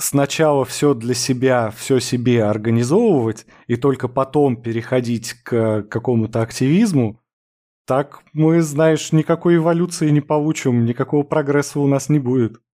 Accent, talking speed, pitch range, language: native, 125 wpm, 120-155 Hz, Russian